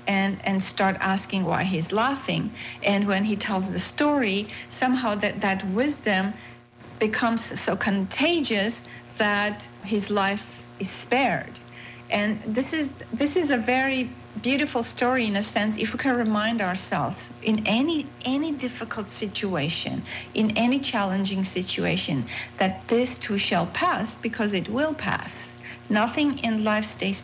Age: 40-59